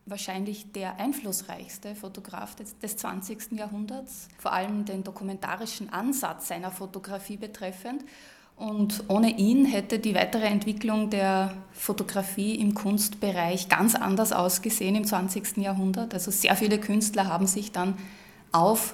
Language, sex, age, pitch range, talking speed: German, female, 20-39, 195-220 Hz, 125 wpm